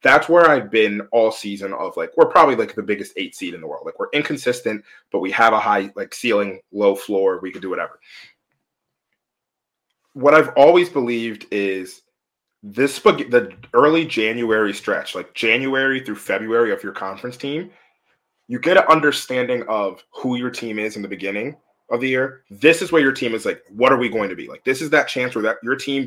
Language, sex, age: English, male, 20-39